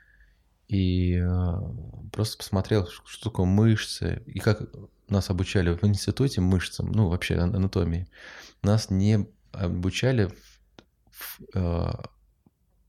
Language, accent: Russian, native